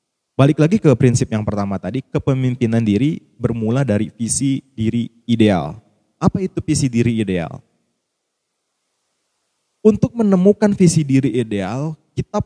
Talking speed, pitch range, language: 120 wpm, 110-155 Hz, Indonesian